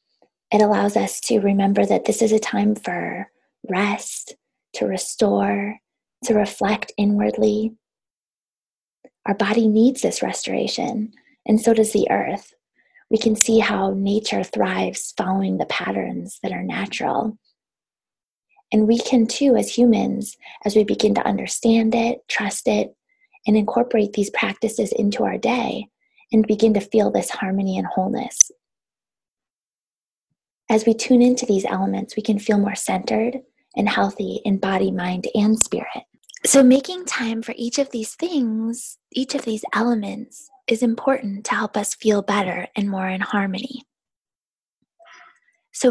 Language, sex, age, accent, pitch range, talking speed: English, female, 20-39, American, 205-240 Hz, 145 wpm